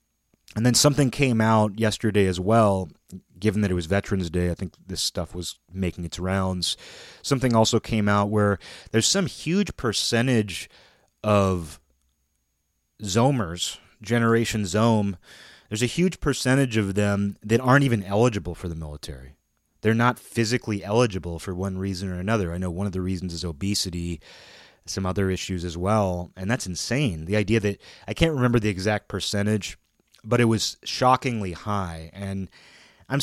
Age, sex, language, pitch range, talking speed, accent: 30-49, male, English, 95-115 Hz, 160 wpm, American